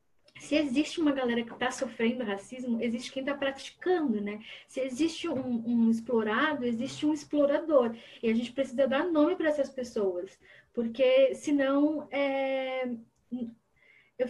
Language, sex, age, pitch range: Portuguese, female, 10-29, 235-280 Hz